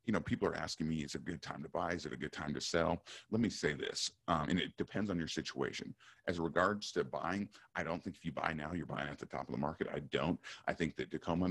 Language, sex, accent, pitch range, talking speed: English, male, American, 75-90 Hz, 290 wpm